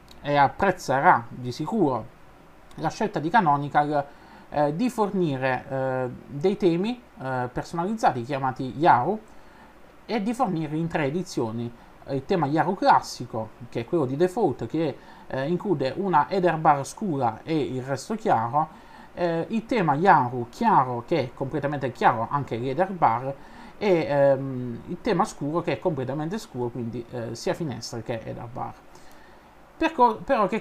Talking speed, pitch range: 145 wpm, 135-190 Hz